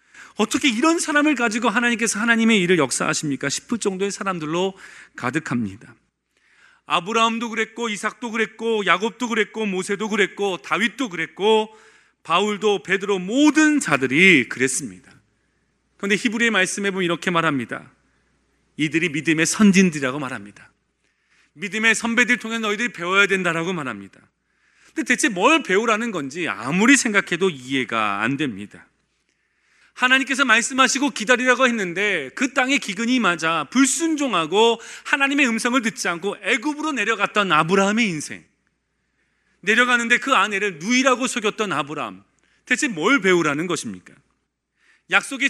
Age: 40-59